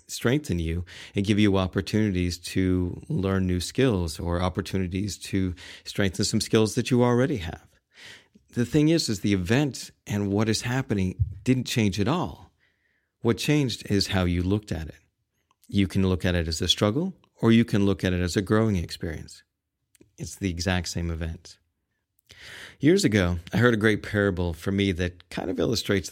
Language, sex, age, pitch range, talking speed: English, male, 40-59, 90-110 Hz, 180 wpm